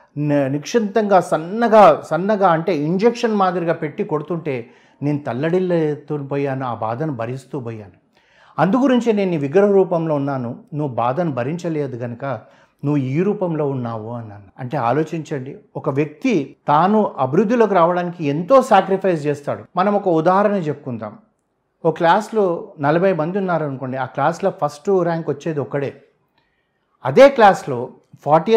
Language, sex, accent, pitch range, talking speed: Telugu, male, native, 140-195 Hz, 125 wpm